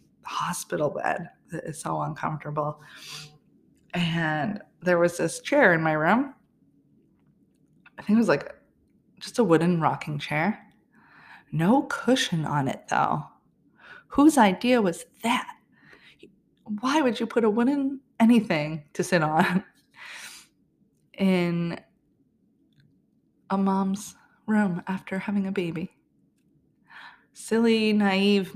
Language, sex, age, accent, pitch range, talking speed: English, female, 20-39, American, 175-225 Hz, 110 wpm